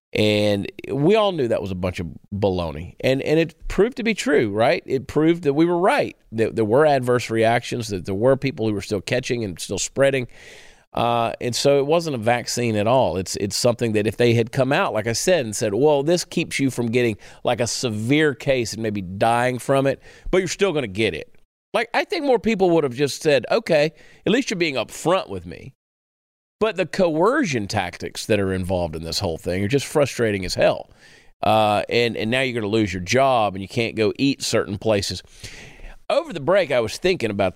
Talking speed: 225 wpm